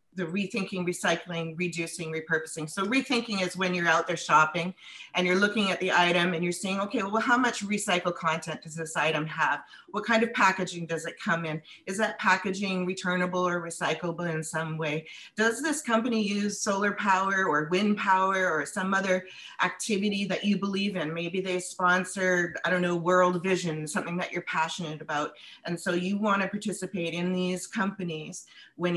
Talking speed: 185 wpm